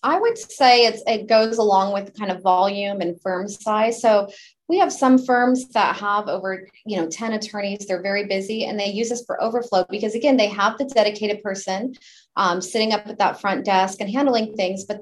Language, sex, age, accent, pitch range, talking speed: English, female, 30-49, American, 190-240 Hz, 210 wpm